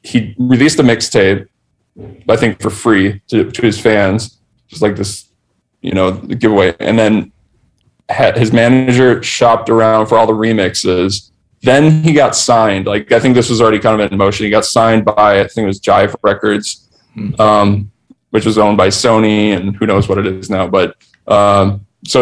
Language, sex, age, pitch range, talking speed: English, male, 20-39, 105-120 Hz, 185 wpm